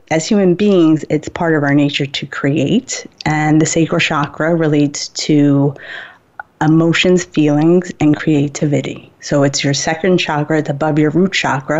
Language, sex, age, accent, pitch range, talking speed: English, female, 30-49, American, 145-175 Hz, 155 wpm